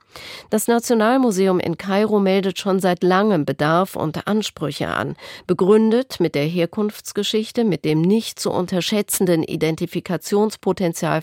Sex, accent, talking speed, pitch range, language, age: female, German, 120 wpm, 165-215 Hz, German, 40-59